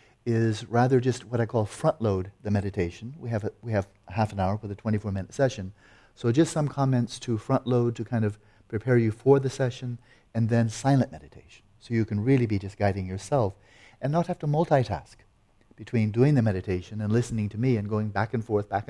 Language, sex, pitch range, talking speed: English, male, 105-130 Hz, 215 wpm